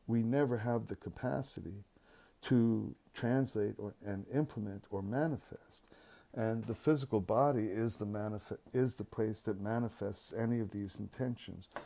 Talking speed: 140 wpm